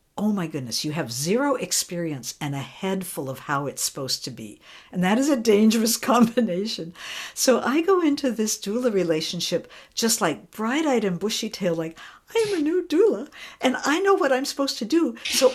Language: English